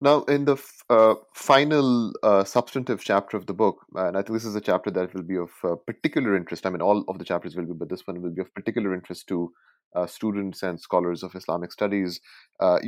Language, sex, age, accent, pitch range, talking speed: English, male, 30-49, Indian, 85-115 Hz, 235 wpm